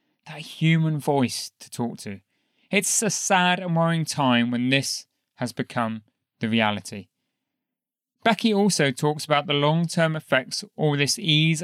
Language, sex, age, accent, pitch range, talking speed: English, male, 30-49, British, 130-180 Hz, 145 wpm